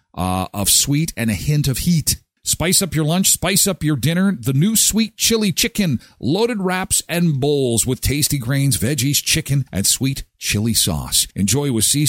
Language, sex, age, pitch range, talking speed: English, male, 50-69, 115-170 Hz, 185 wpm